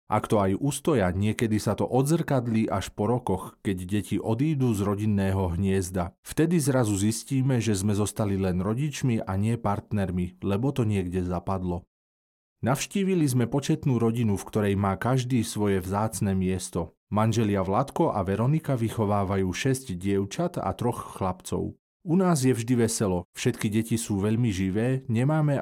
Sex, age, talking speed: male, 40-59, 150 wpm